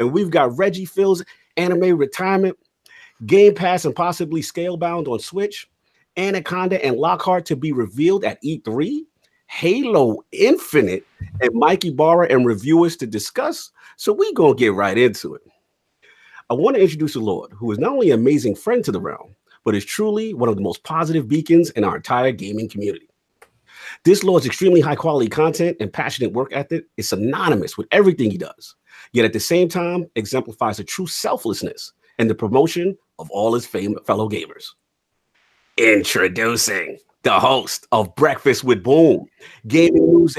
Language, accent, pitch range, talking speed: English, American, 155-205 Hz, 160 wpm